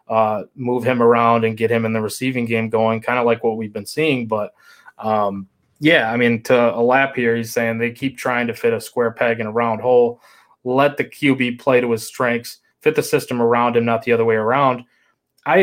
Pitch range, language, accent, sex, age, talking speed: 120-155 Hz, English, American, male, 20-39, 230 wpm